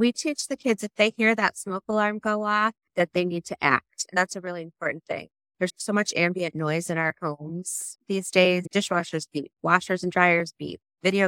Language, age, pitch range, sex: English, 30-49, 155-190 Hz, female